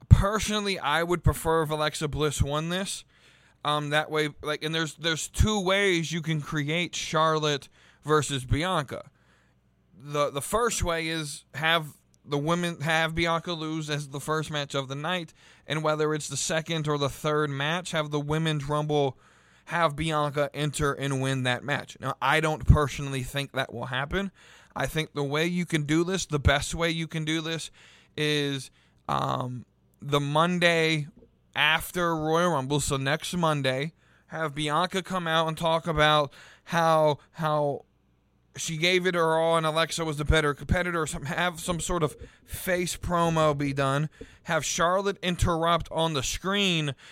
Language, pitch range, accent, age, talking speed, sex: English, 140-165 Hz, American, 20-39, 165 wpm, male